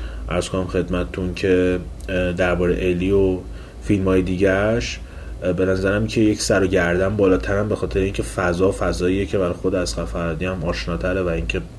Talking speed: 160 wpm